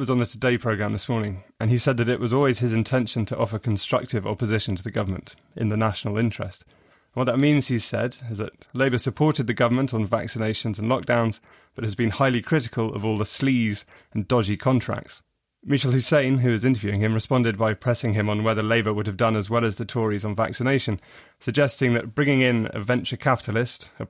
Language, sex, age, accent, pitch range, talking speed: English, male, 30-49, British, 110-125 Hz, 210 wpm